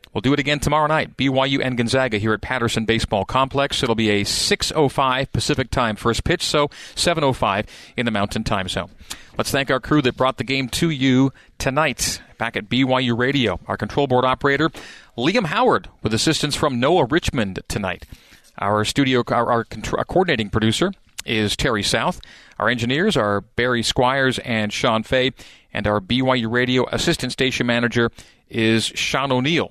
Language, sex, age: English, male, 40-59